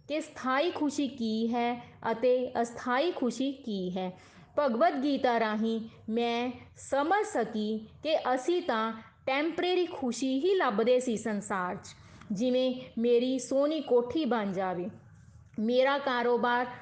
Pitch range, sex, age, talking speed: 220-285 Hz, female, 20-39, 120 wpm